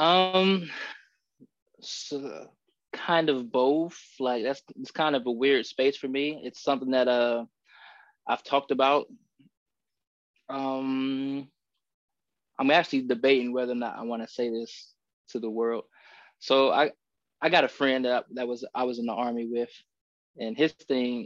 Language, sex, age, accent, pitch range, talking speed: English, male, 20-39, American, 120-150 Hz, 150 wpm